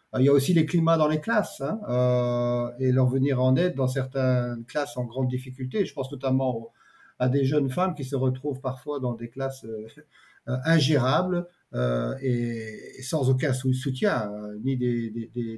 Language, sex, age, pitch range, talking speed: Dutch, male, 50-69, 130-160 Hz, 165 wpm